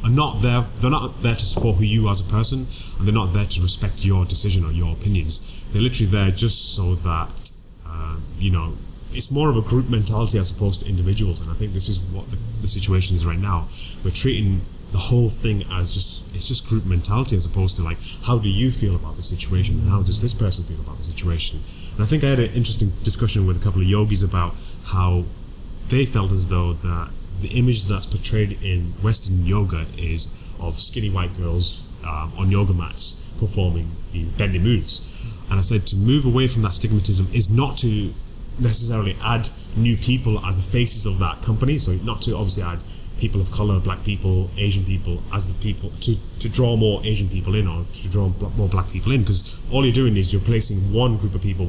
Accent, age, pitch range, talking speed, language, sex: British, 20-39, 90-110 Hz, 220 wpm, English, male